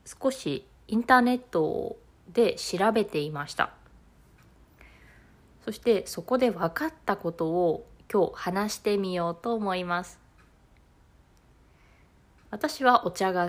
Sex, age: female, 20-39